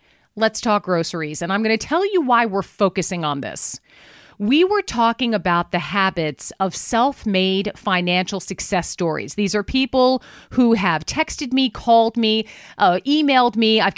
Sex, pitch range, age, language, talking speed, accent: female, 190-245 Hz, 40-59, English, 165 wpm, American